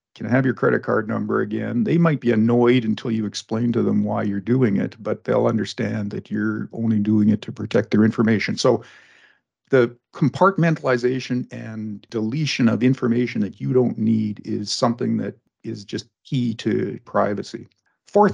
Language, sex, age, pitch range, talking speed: English, male, 50-69, 110-130 Hz, 170 wpm